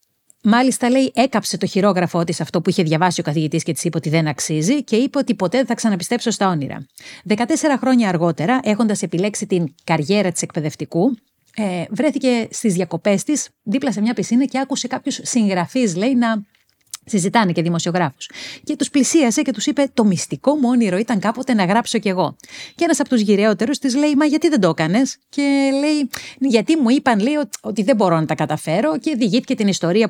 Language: Greek